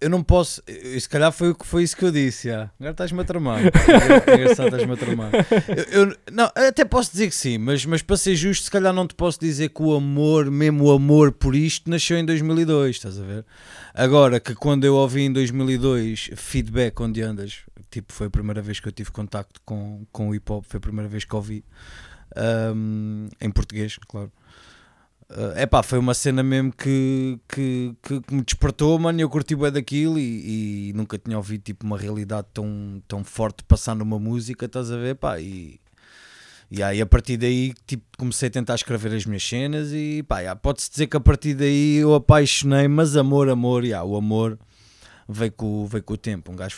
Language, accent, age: Portuguese, Portuguese, 20-39